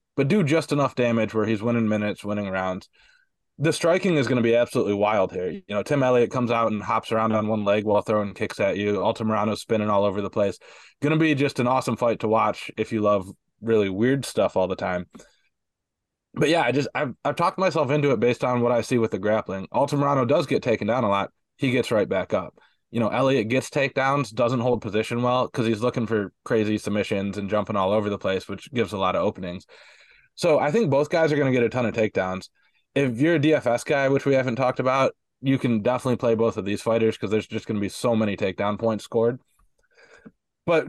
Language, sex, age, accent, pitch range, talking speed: English, male, 20-39, American, 105-135 Hz, 235 wpm